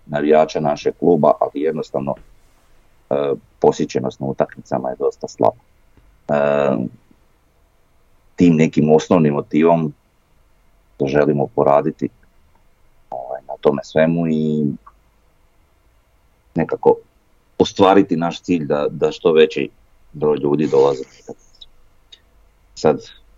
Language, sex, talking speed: Croatian, male, 95 wpm